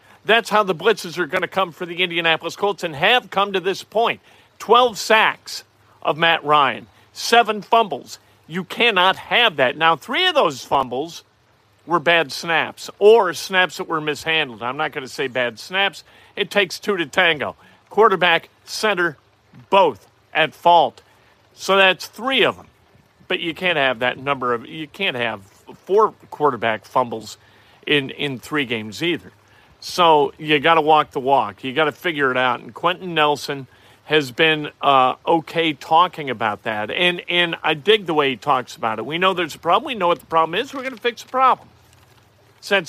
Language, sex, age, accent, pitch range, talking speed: English, male, 50-69, American, 135-195 Hz, 185 wpm